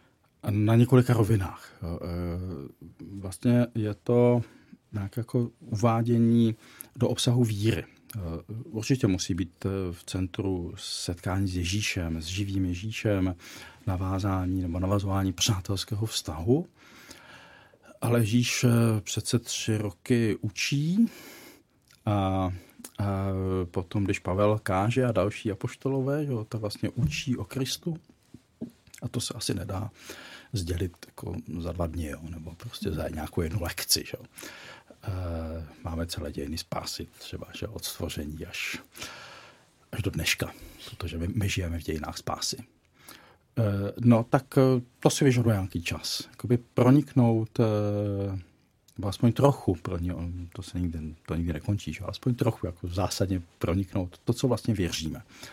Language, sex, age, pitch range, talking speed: Czech, male, 40-59, 90-120 Hz, 125 wpm